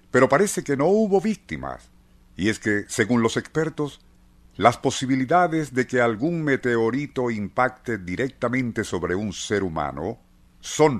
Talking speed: 135 wpm